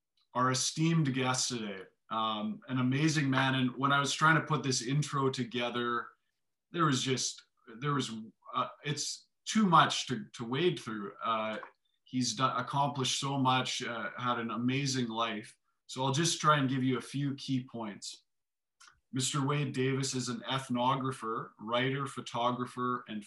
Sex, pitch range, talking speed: male, 115-135 Hz, 155 wpm